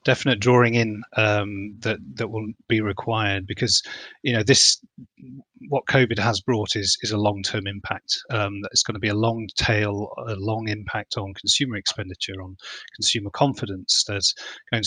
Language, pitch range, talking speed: English, 100-115 Hz, 165 wpm